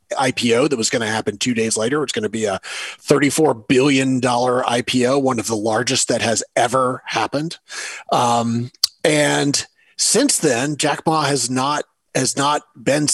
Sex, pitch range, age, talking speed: male, 120-150 Hz, 30-49, 165 wpm